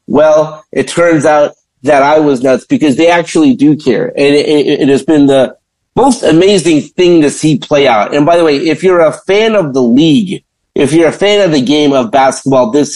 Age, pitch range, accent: 50-69, 145-190 Hz, American